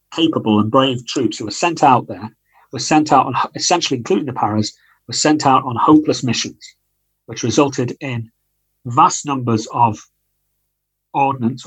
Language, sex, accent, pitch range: English, male, British, 120-145 Hz